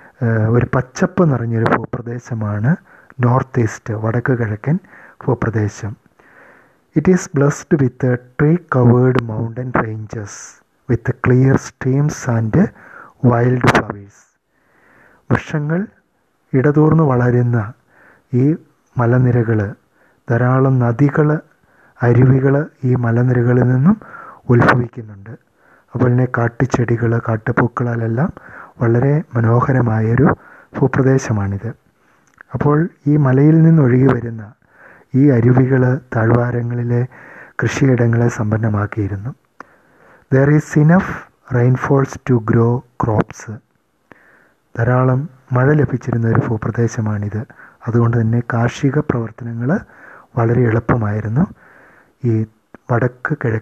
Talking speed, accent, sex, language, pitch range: 80 wpm, Indian, male, English, 115-140 Hz